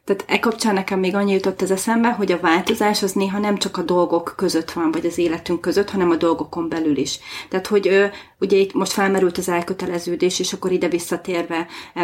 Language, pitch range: Hungarian, 175-210 Hz